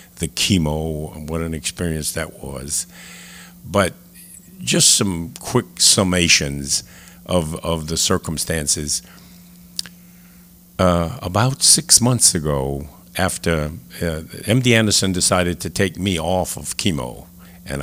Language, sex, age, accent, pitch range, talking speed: English, male, 50-69, American, 80-105 Hz, 115 wpm